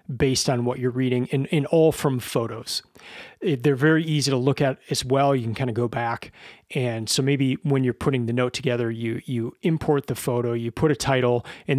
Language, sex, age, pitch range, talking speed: English, male, 30-49, 120-150 Hz, 225 wpm